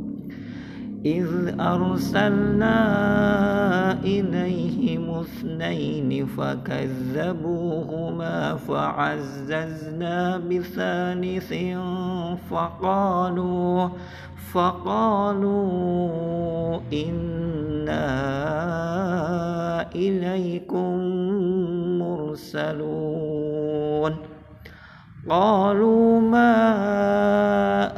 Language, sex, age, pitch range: Indonesian, male, 50-69, 155-200 Hz